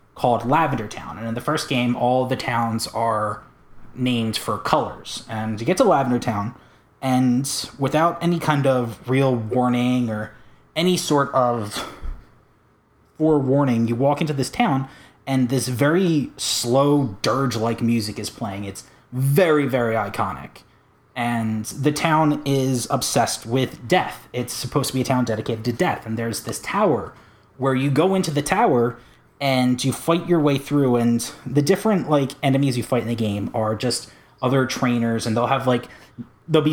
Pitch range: 115-140 Hz